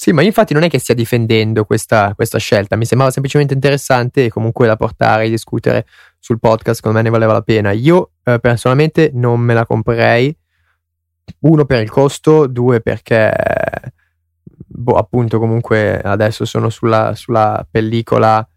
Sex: male